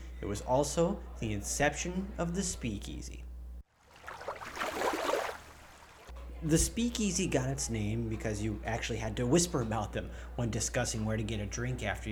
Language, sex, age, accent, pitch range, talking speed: English, male, 30-49, American, 100-145 Hz, 145 wpm